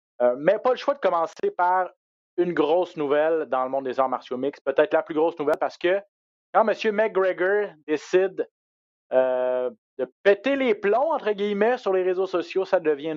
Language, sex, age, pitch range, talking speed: French, male, 30-49, 130-180 Hz, 200 wpm